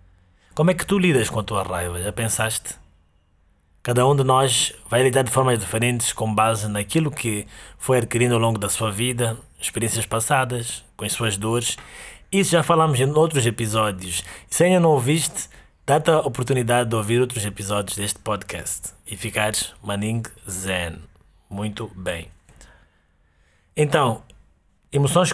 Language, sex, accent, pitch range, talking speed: Portuguese, male, Brazilian, 95-135 Hz, 150 wpm